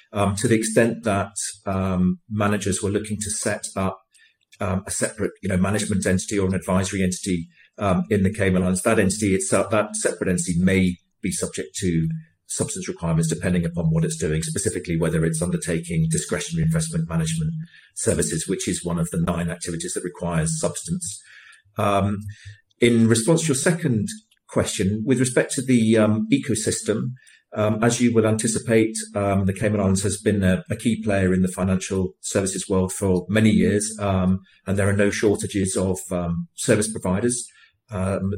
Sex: male